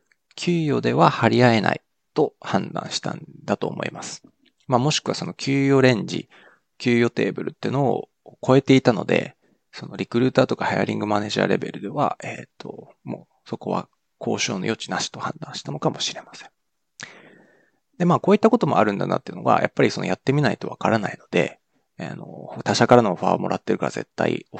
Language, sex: Japanese, male